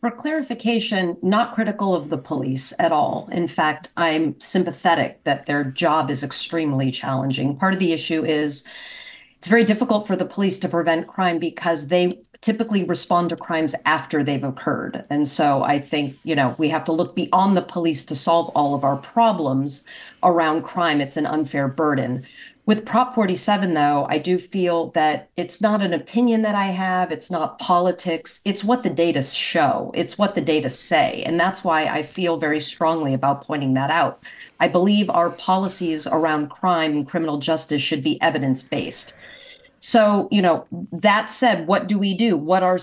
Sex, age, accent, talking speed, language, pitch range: female, 40-59, American, 180 wpm, English, 155-205 Hz